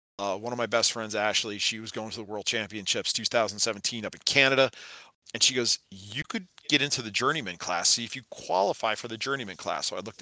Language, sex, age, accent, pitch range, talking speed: English, male, 40-59, American, 100-120 Hz, 230 wpm